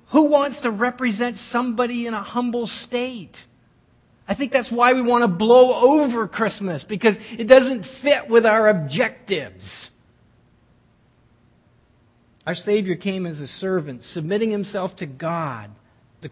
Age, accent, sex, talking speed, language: 50-69, American, male, 135 wpm, English